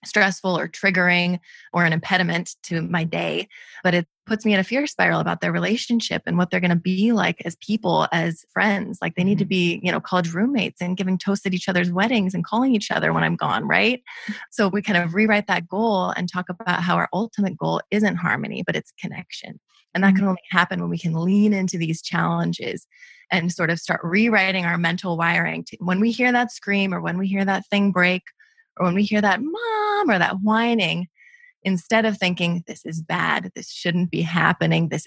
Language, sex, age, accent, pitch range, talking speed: English, female, 20-39, American, 175-210 Hz, 215 wpm